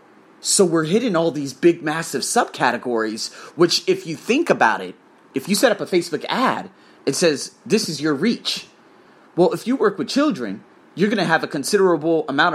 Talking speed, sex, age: 190 wpm, male, 30-49